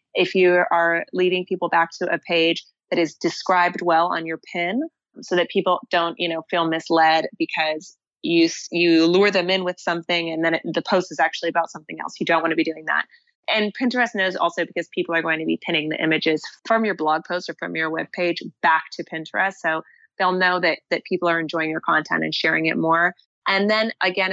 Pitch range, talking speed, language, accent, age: 165-190 Hz, 225 wpm, English, American, 20-39